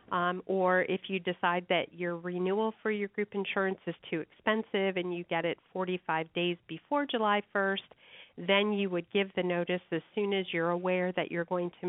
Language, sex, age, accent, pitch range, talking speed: English, female, 40-59, American, 175-205 Hz, 195 wpm